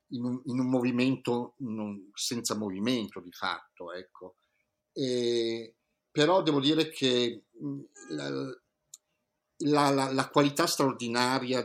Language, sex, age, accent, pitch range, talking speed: Italian, male, 50-69, native, 105-160 Hz, 95 wpm